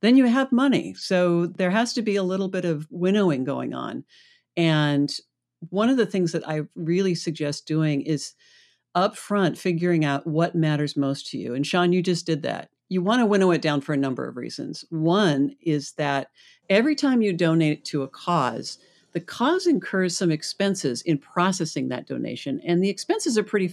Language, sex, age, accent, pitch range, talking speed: English, female, 50-69, American, 145-190 Hz, 190 wpm